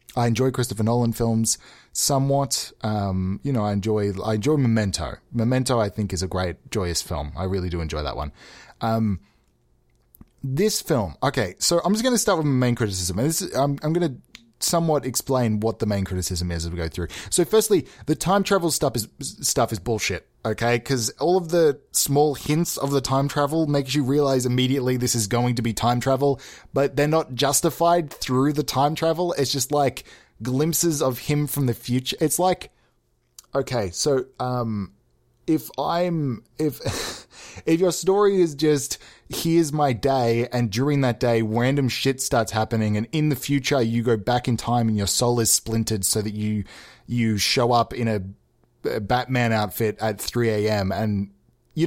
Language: English